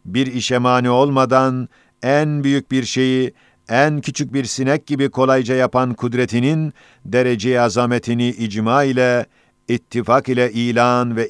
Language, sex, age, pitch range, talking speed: Turkish, male, 50-69, 120-130 Hz, 125 wpm